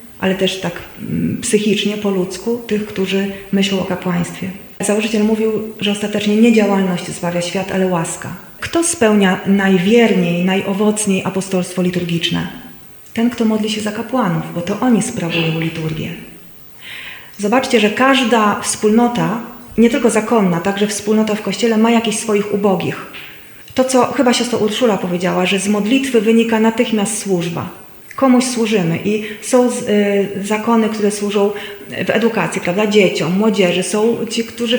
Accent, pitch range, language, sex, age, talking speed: native, 190-230 Hz, Polish, female, 30-49, 140 wpm